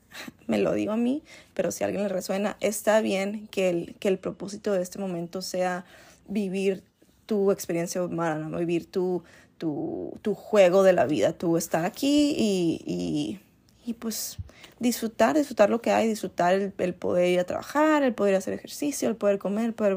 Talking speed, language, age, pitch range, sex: 185 wpm, Spanish, 20-39, 180-235 Hz, female